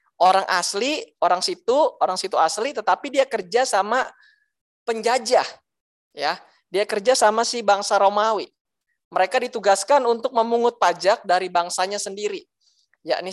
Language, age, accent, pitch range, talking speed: Indonesian, 20-39, native, 160-235 Hz, 125 wpm